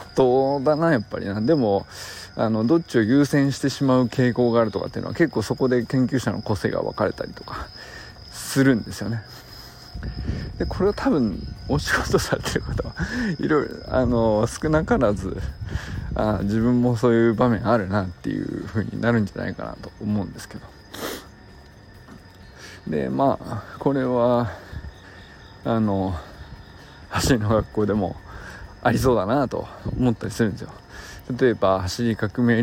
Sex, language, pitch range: male, Japanese, 95-125 Hz